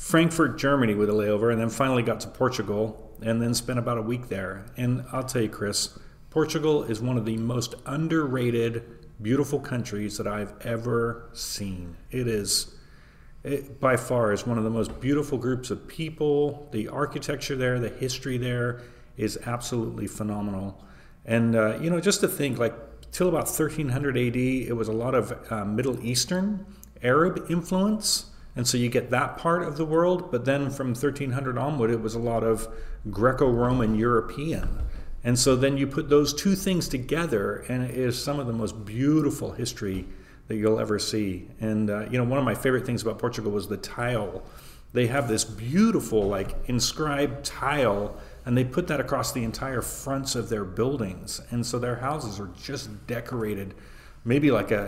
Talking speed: 180 wpm